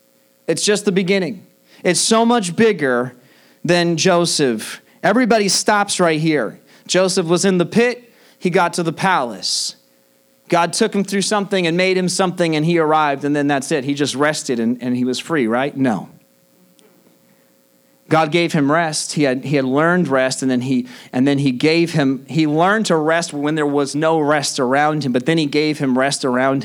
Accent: American